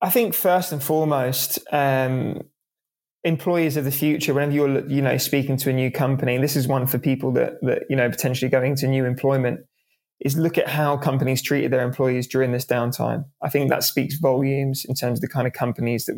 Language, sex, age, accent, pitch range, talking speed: English, male, 20-39, British, 130-150 Hz, 215 wpm